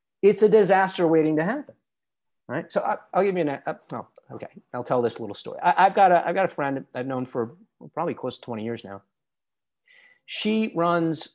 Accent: American